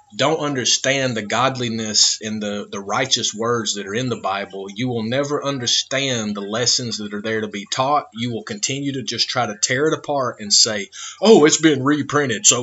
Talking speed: 205 wpm